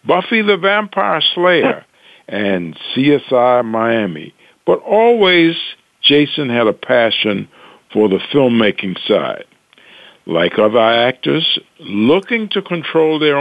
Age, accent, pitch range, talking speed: 60-79, American, 120-180 Hz, 105 wpm